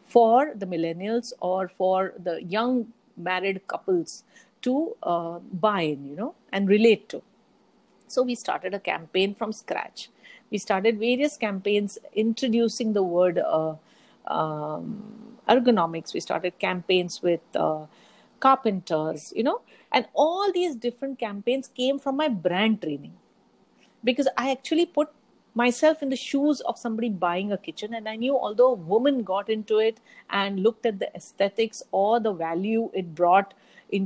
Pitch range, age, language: 190-250 Hz, 50-69, English